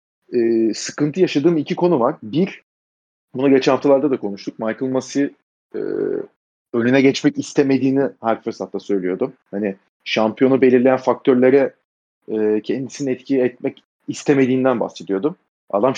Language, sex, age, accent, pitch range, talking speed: Turkish, male, 30-49, native, 120-160 Hz, 115 wpm